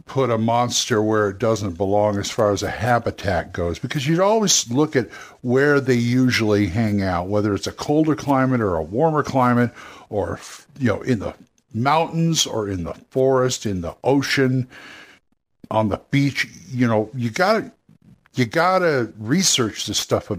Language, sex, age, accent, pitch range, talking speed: English, male, 60-79, American, 100-130 Hz, 170 wpm